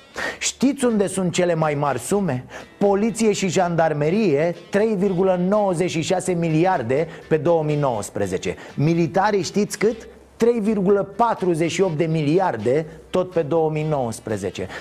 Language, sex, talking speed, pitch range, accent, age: Romanian, male, 95 wpm, 180-240 Hz, native, 30-49